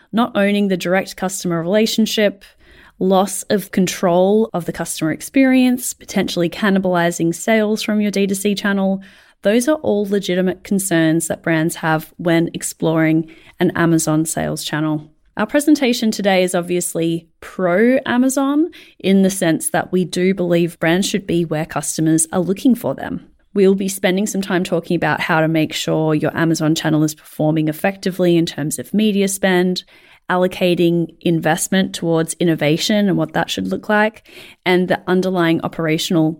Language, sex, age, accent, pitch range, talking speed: English, female, 30-49, Australian, 165-205 Hz, 150 wpm